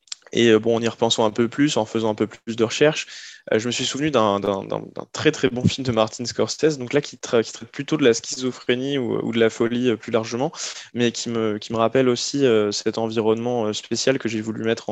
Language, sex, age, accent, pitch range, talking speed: French, male, 20-39, French, 110-130 Hz, 250 wpm